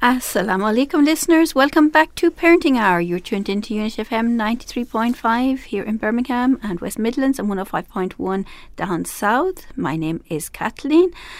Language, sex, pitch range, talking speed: English, female, 185-235 Hz, 180 wpm